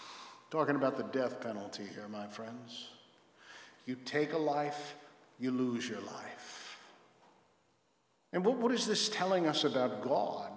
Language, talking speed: English, 140 wpm